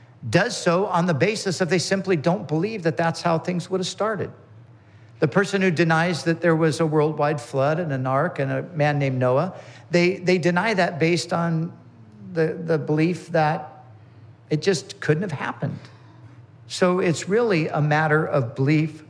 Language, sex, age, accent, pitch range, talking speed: English, male, 50-69, American, 125-160 Hz, 180 wpm